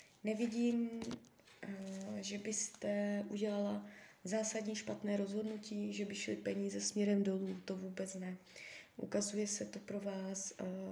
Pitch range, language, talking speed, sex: 190-225 Hz, Czech, 115 wpm, female